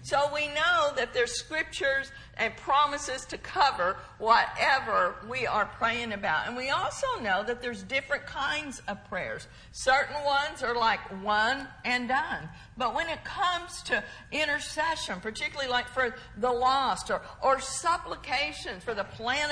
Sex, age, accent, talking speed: female, 50-69, American, 150 wpm